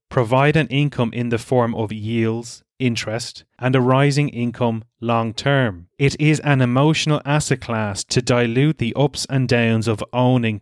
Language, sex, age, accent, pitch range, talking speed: English, male, 30-49, Irish, 115-140 Hz, 160 wpm